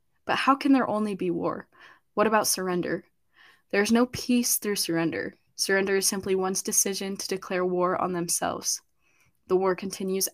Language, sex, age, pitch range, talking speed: English, female, 10-29, 185-210 Hz, 170 wpm